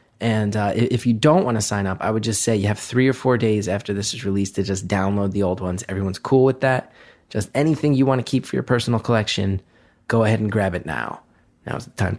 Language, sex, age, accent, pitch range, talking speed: English, male, 30-49, American, 105-130 Hz, 255 wpm